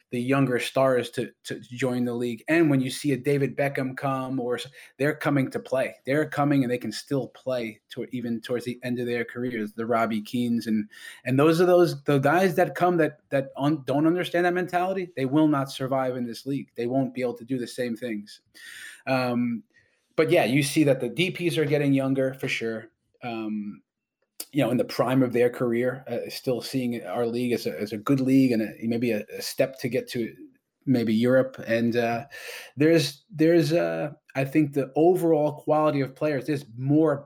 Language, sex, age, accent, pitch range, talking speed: English, male, 20-39, American, 120-145 Hz, 210 wpm